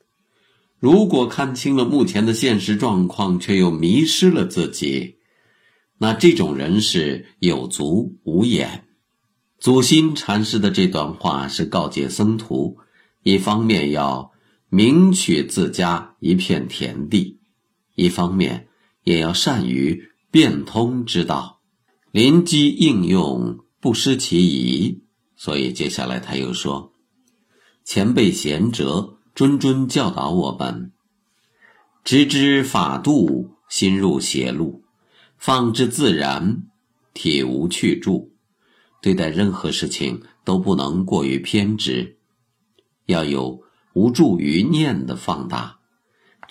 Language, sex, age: Chinese, male, 50-69